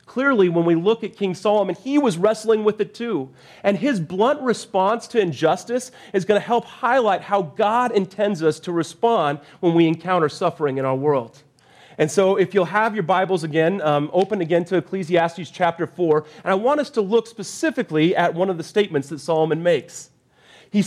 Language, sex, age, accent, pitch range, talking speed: English, male, 30-49, American, 165-220 Hz, 195 wpm